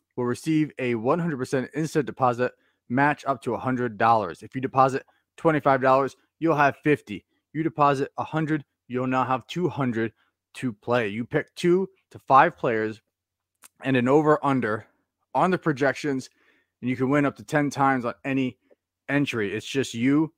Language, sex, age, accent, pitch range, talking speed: English, male, 30-49, American, 125-145 Hz, 155 wpm